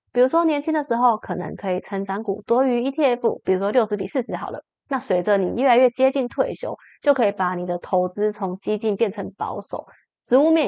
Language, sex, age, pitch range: Chinese, female, 20-39, 200-265 Hz